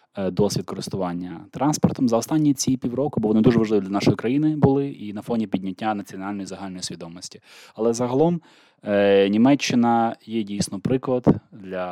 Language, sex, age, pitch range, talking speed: Ukrainian, male, 20-39, 95-125 Hz, 145 wpm